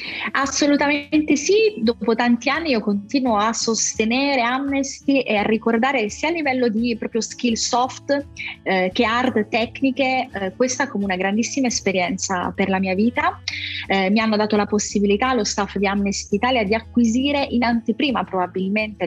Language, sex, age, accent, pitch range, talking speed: Italian, female, 30-49, native, 200-240 Hz, 155 wpm